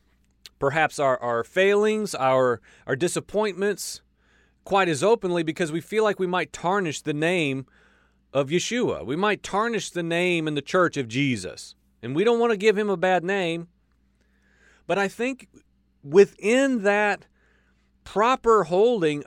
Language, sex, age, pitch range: English, male, 40-59, 135-195 Hz